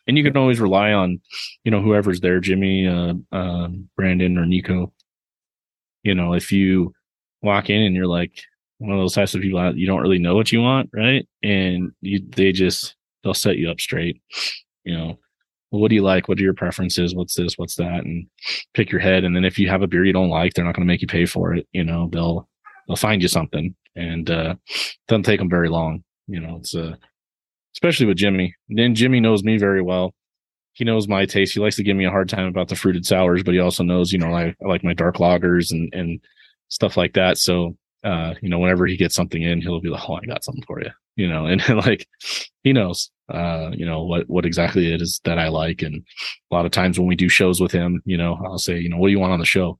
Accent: American